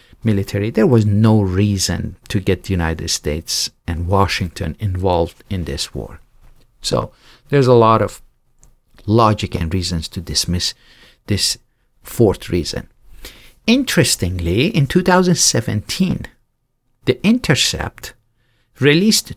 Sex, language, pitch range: male, English, 105-135 Hz